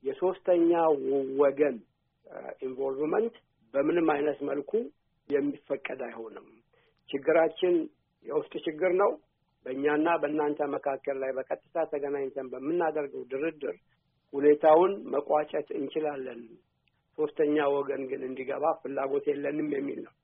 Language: Amharic